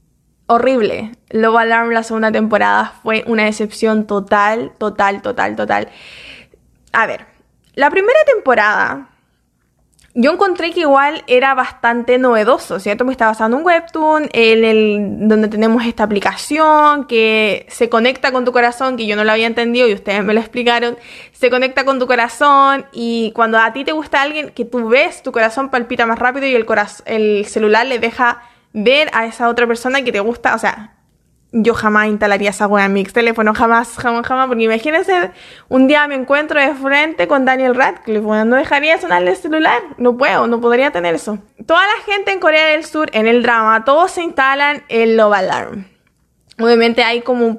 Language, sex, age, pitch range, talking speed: Spanish, female, 20-39, 220-275 Hz, 185 wpm